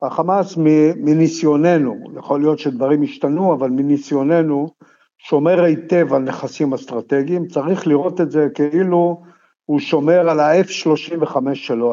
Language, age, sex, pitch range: Hebrew, 50-69, male, 140-170 Hz